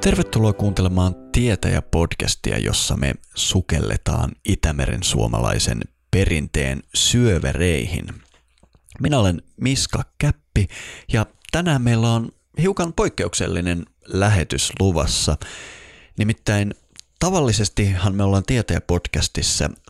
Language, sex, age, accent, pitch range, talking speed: Finnish, male, 30-49, native, 80-110 Hz, 80 wpm